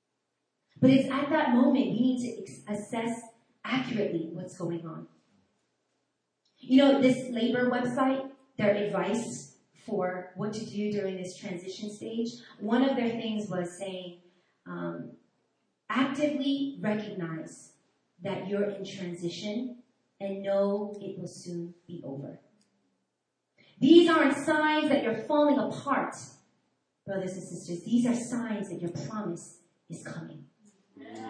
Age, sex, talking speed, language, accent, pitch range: 30-49, female, 125 wpm, English, American, 195-285 Hz